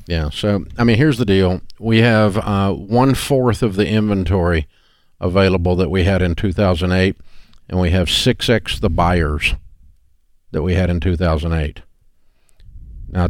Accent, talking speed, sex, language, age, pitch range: American, 140 wpm, male, English, 50-69, 85-105 Hz